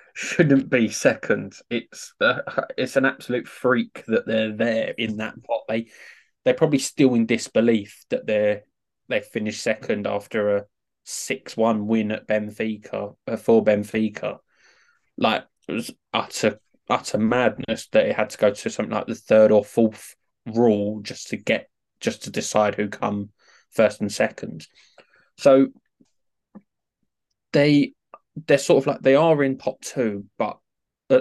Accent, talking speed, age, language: British, 155 wpm, 20-39, English